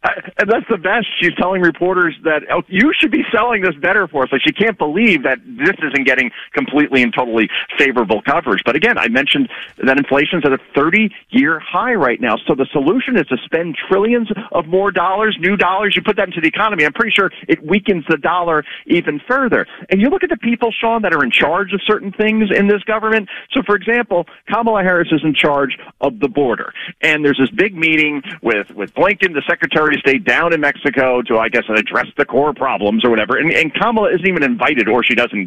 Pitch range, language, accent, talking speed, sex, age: 140-215 Hz, English, American, 220 wpm, male, 40-59